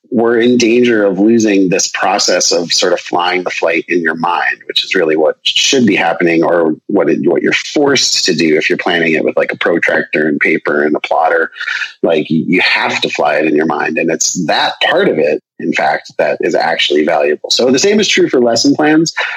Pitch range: 110-130 Hz